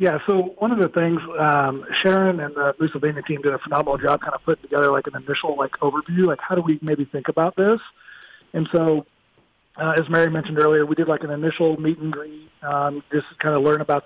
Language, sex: English, male